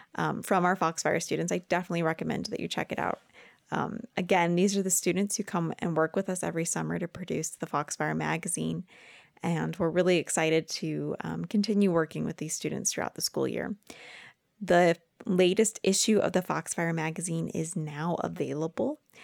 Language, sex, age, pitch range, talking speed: English, female, 20-39, 160-205 Hz, 180 wpm